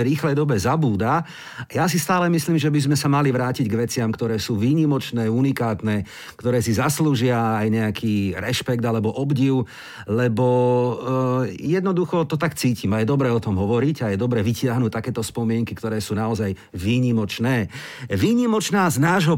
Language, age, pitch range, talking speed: Slovak, 50-69, 115-155 Hz, 160 wpm